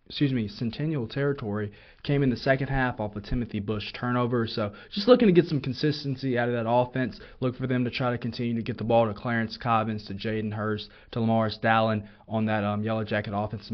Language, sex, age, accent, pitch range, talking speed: English, male, 20-39, American, 110-125 Hz, 225 wpm